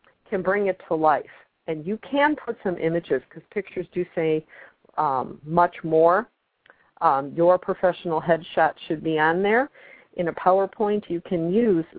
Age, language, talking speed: 50-69, English, 160 wpm